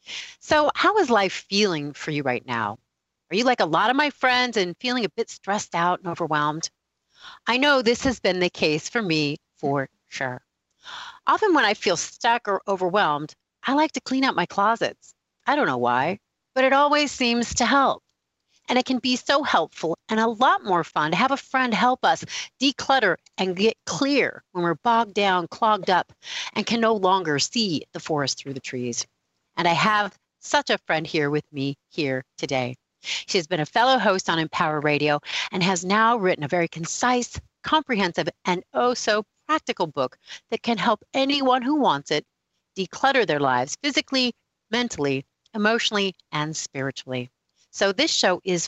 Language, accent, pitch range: English, American, 155-245 Hz